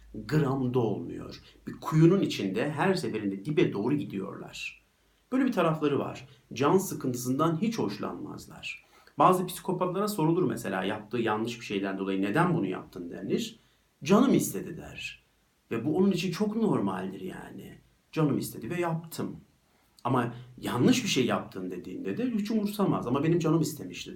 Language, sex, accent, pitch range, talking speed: Turkish, male, native, 115-185 Hz, 145 wpm